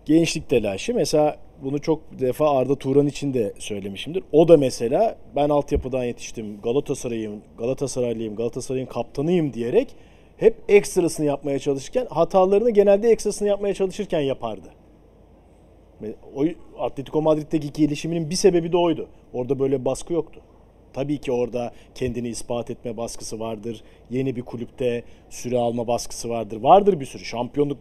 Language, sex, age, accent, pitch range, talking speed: Turkish, male, 40-59, native, 120-180 Hz, 140 wpm